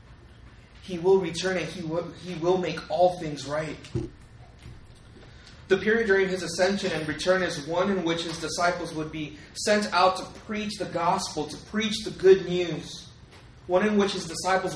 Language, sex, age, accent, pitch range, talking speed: English, male, 20-39, American, 135-185 Hz, 170 wpm